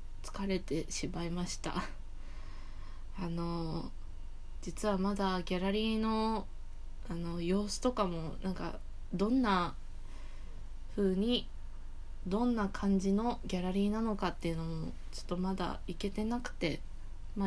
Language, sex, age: Japanese, female, 20-39